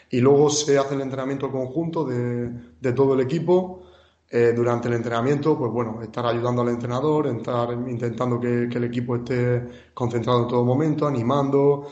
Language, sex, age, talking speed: Spanish, male, 30-49, 170 wpm